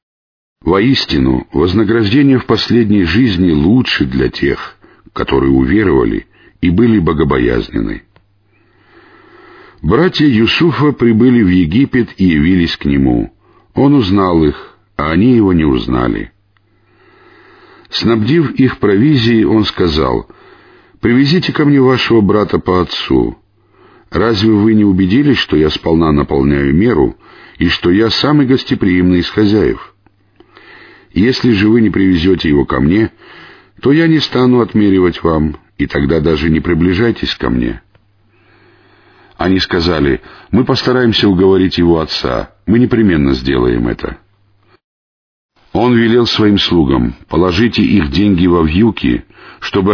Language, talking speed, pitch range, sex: Russian, 120 wpm, 85-115 Hz, male